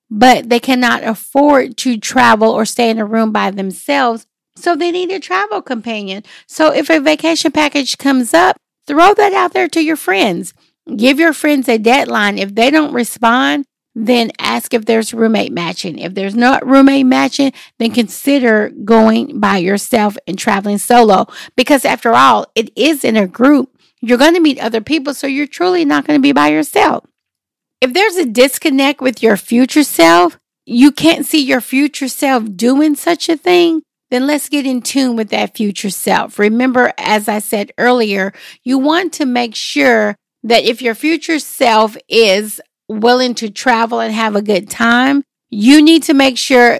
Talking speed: 180 wpm